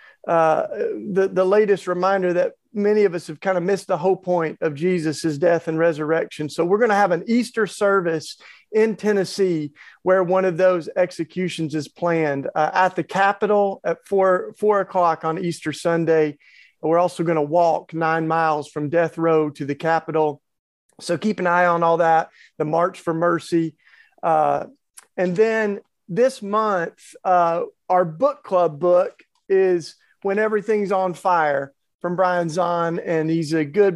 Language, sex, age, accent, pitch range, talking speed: English, male, 40-59, American, 165-195 Hz, 170 wpm